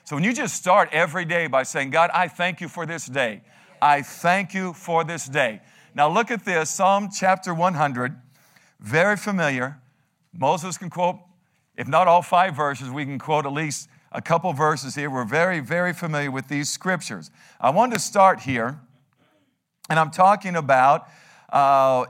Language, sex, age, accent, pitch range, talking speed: English, male, 50-69, American, 140-180 Hz, 175 wpm